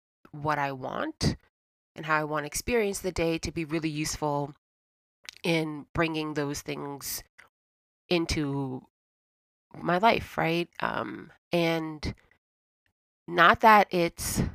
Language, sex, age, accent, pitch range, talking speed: English, female, 30-49, American, 140-190 Hz, 115 wpm